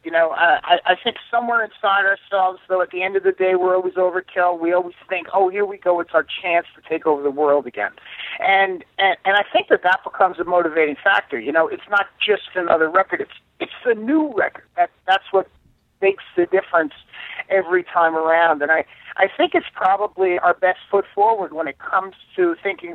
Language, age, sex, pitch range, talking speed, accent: English, 50-69, male, 170-220 Hz, 210 wpm, American